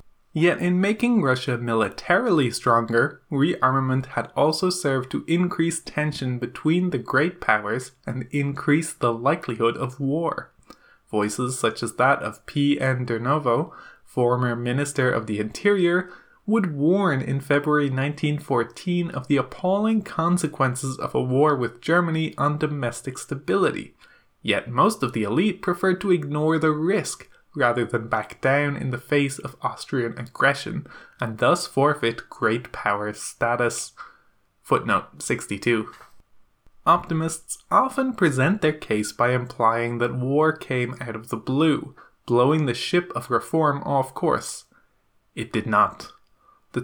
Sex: male